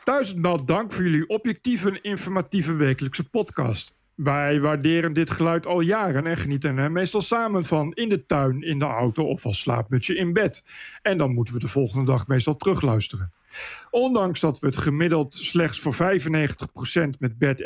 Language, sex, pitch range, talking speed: Dutch, male, 150-205 Hz, 175 wpm